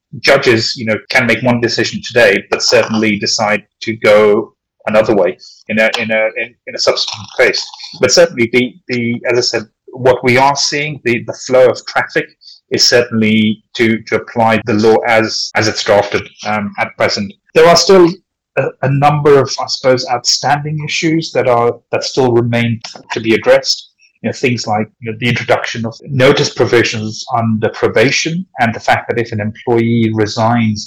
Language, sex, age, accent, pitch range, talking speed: English, male, 30-49, British, 110-130 Hz, 185 wpm